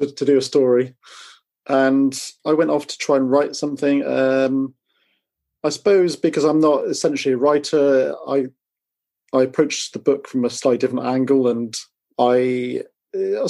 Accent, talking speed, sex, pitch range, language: British, 155 wpm, male, 125-145 Hz, English